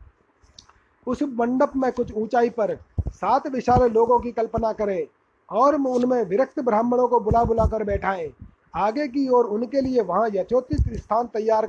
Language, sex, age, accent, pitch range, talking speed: Hindi, male, 30-49, native, 220-265 Hz, 155 wpm